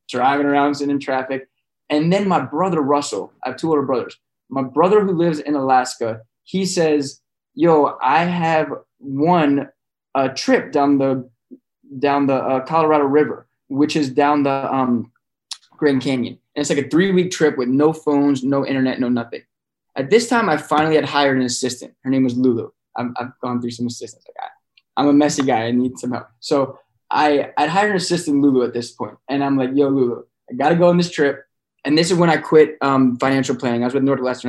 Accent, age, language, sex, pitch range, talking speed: American, 20-39, English, male, 130-155 Hz, 210 wpm